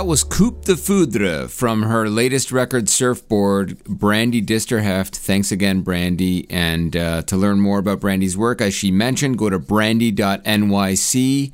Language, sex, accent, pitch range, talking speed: English, male, American, 100-125 Hz, 150 wpm